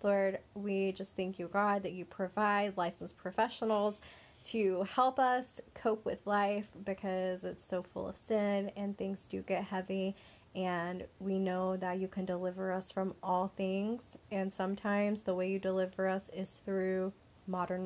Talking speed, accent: 165 wpm, American